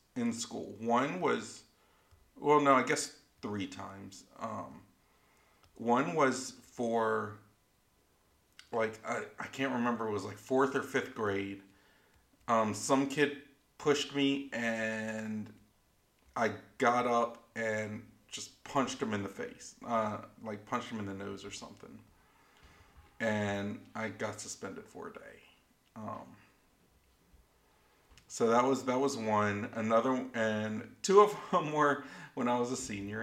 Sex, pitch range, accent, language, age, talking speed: male, 105-135 Hz, American, English, 40-59, 135 wpm